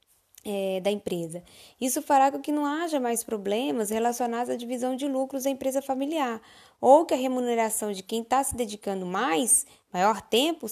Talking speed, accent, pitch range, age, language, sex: 170 wpm, Brazilian, 220-285 Hz, 10-29, Portuguese, female